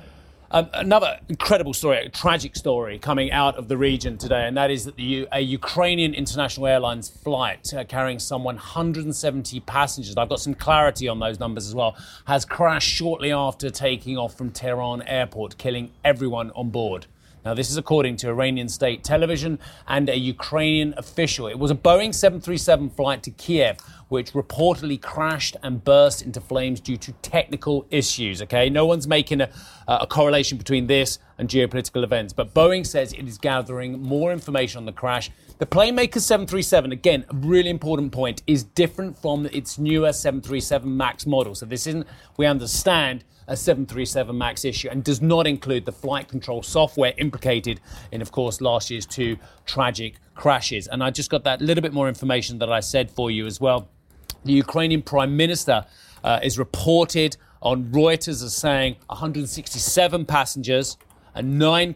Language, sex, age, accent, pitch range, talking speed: English, male, 30-49, British, 125-150 Hz, 170 wpm